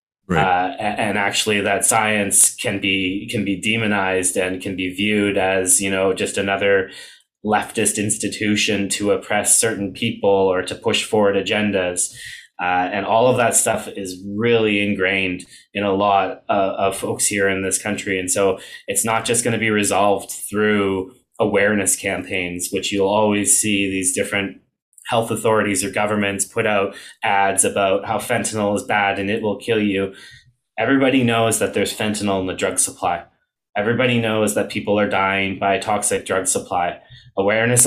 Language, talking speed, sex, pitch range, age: English, 165 wpm, male, 95-105 Hz, 20-39